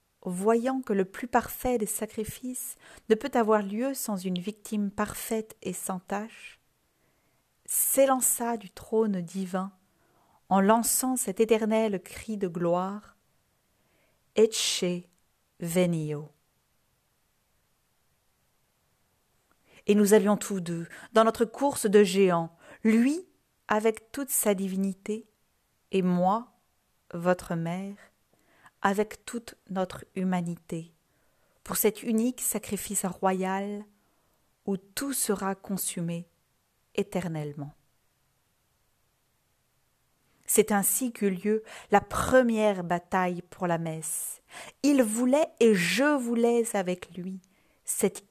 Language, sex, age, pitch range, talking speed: French, female, 40-59, 180-225 Hz, 105 wpm